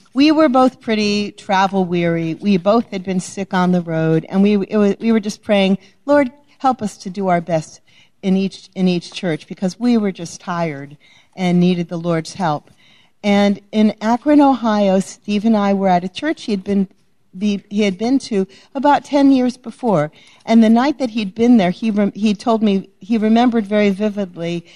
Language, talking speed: English, 195 wpm